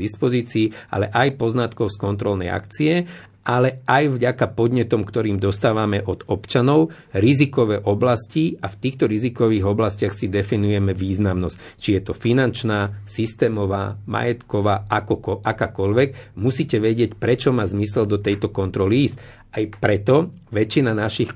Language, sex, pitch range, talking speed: Slovak, male, 100-120 Hz, 125 wpm